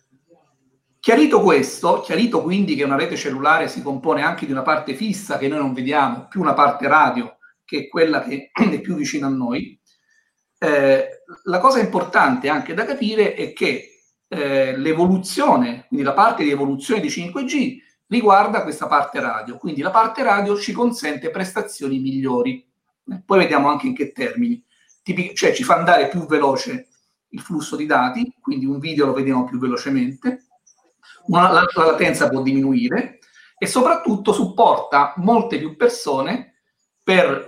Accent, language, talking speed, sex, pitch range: native, Italian, 155 wpm, male, 150-250 Hz